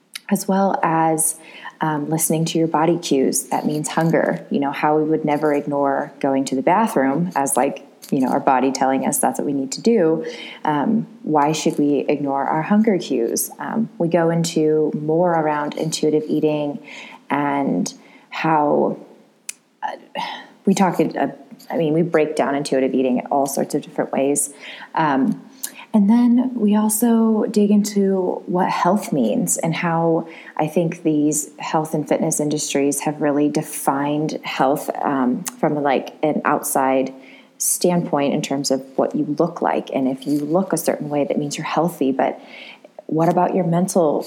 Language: English